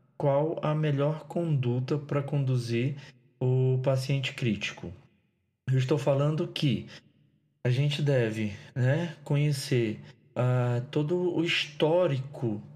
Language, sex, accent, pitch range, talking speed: Portuguese, male, Brazilian, 125-150 Hz, 100 wpm